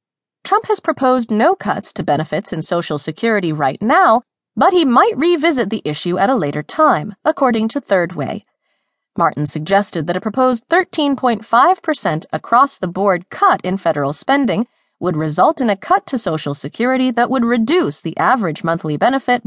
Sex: female